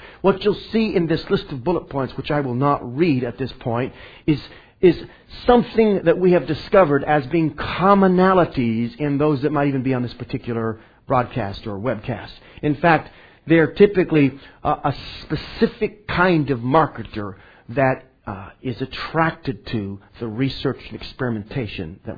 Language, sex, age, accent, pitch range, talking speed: English, male, 50-69, American, 120-170 Hz, 160 wpm